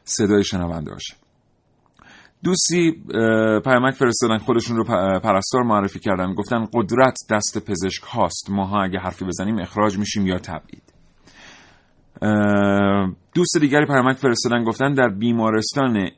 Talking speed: 115 wpm